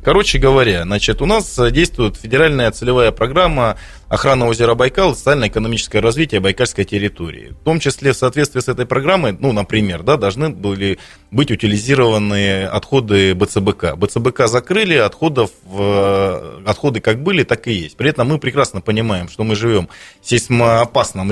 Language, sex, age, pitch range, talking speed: Russian, male, 20-39, 100-135 Hz, 145 wpm